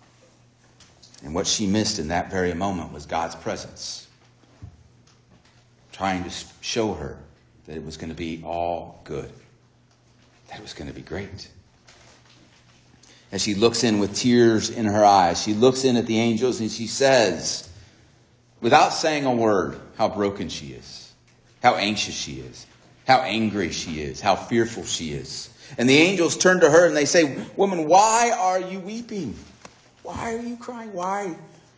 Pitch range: 95-130 Hz